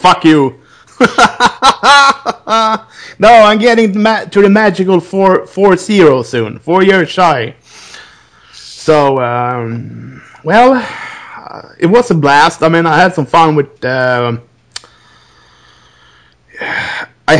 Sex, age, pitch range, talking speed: male, 30-49, 125-185 Hz, 115 wpm